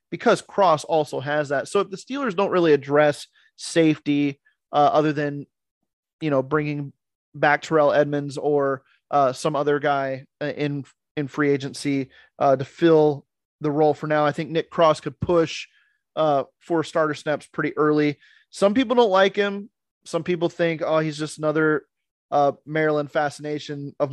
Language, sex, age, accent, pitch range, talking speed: English, male, 30-49, American, 145-175 Hz, 165 wpm